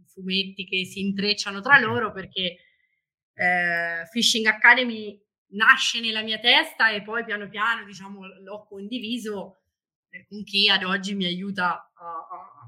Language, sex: Italian, female